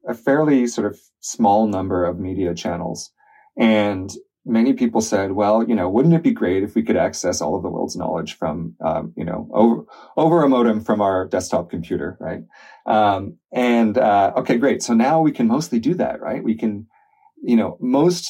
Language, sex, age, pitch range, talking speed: English, male, 30-49, 95-130 Hz, 195 wpm